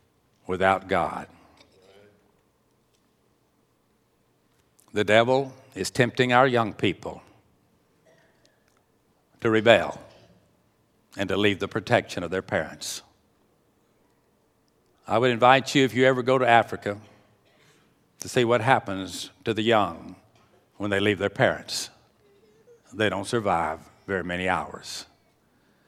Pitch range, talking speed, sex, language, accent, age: 100-140 Hz, 110 wpm, male, English, American, 60-79